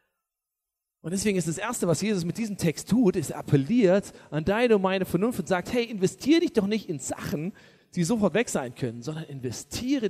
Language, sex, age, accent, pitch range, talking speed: German, male, 40-59, German, 155-205 Hz, 200 wpm